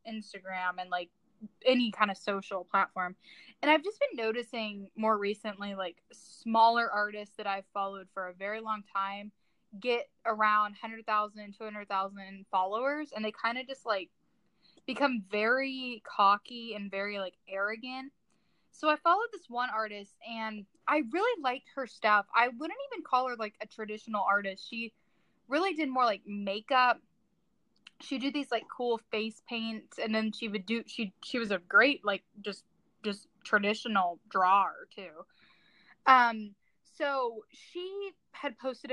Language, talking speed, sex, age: English, 155 wpm, female, 10-29